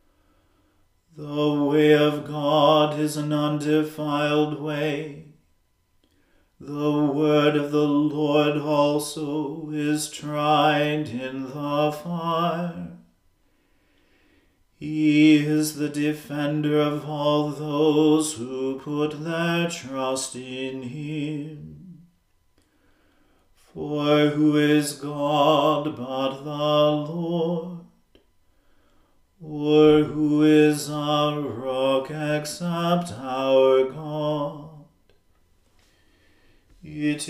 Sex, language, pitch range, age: male, English, 145-150 Hz, 40-59